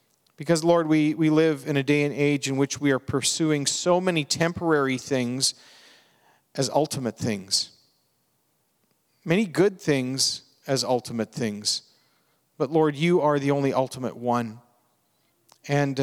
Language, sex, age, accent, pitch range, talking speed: English, male, 50-69, American, 130-165 Hz, 140 wpm